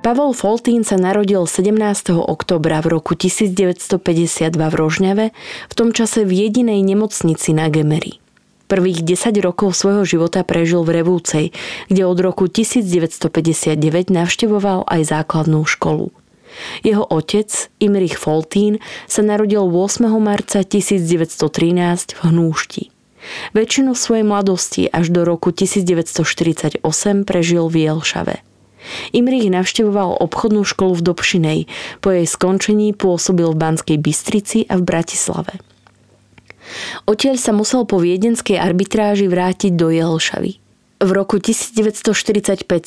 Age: 20-39